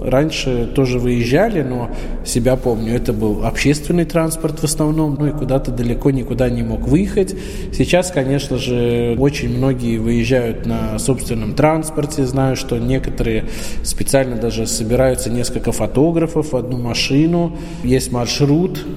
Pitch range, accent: 120-160 Hz, native